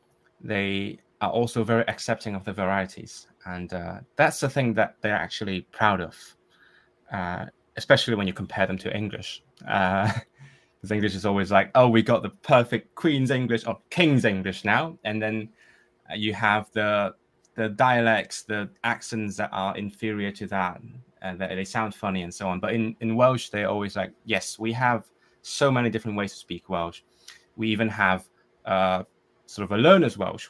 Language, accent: English, British